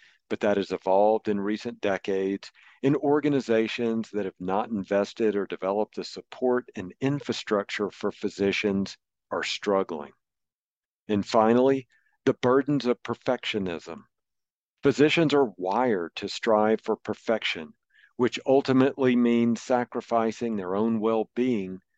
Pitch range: 100-120 Hz